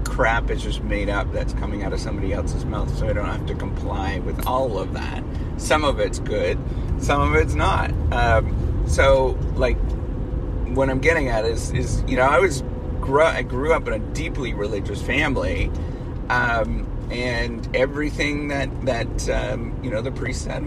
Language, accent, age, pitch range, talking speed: English, American, 40-59, 100-130 Hz, 180 wpm